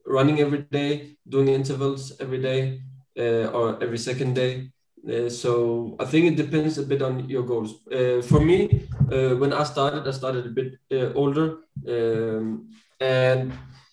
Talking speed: 165 wpm